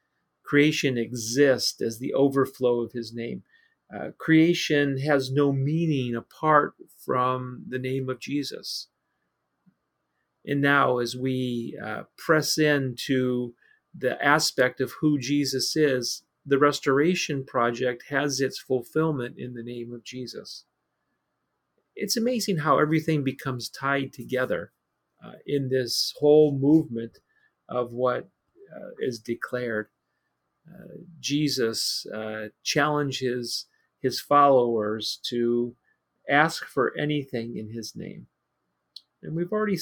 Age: 40-59